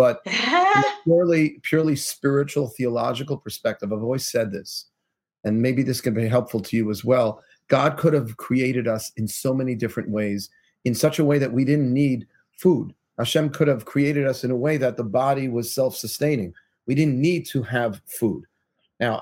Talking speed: 190 wpm